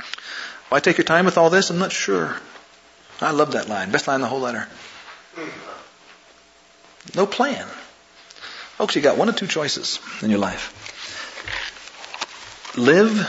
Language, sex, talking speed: English, male, 150 wpm